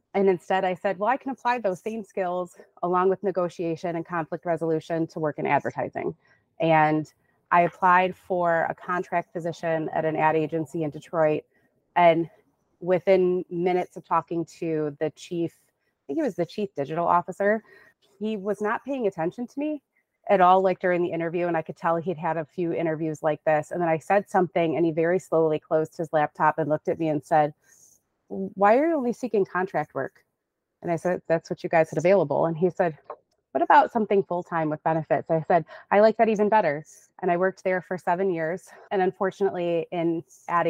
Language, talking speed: English, 200 wpm